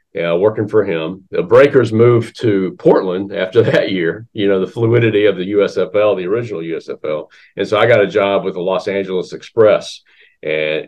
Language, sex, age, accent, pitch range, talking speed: English, male, 50-69, American, 90-120 Hz, 190 wpm